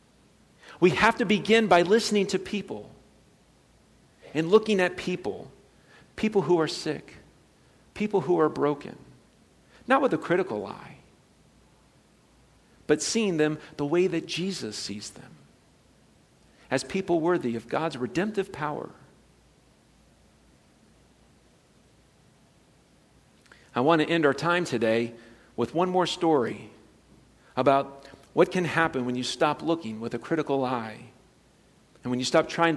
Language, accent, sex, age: English, American, male, 50-69